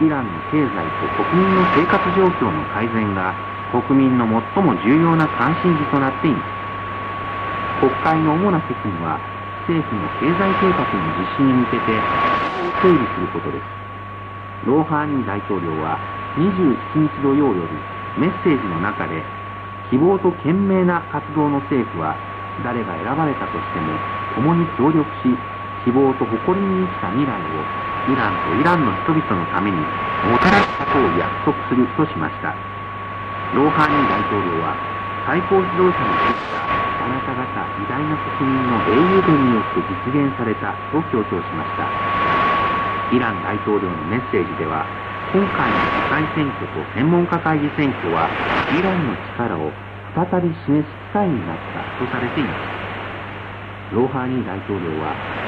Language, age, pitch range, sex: Korean, 50-69, 100-145 Hz, male